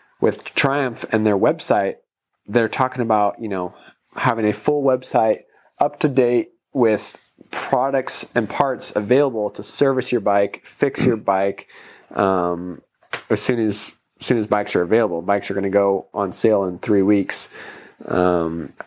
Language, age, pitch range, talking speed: English, 30-49, 100-120 Hz, 160 wpm